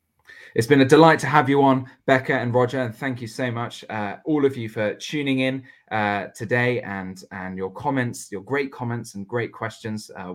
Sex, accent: male, British